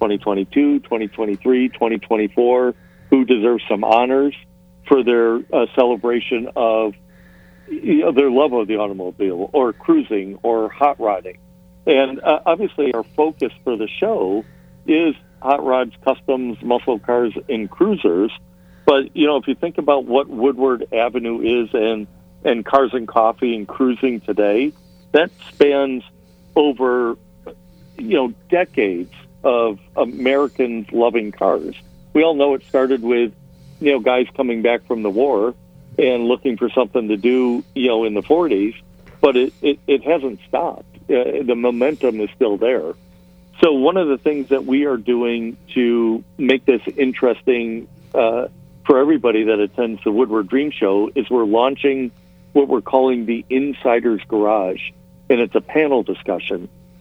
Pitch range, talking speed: 105-135 Hz, 145 wpm